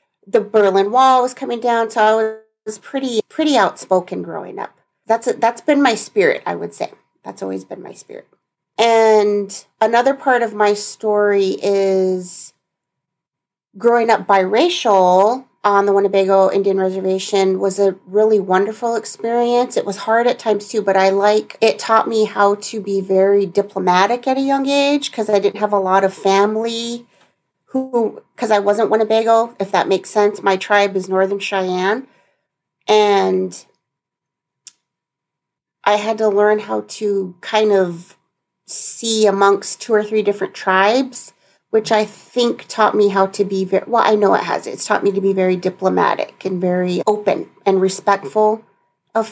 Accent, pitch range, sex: American, 195-230 Hz, female